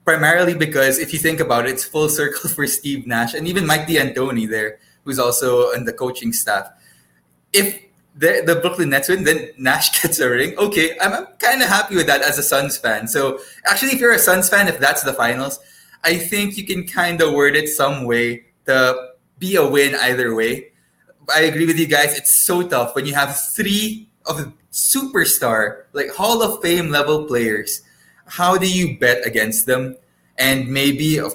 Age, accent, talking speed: 20-39, Filipino, 195 wpm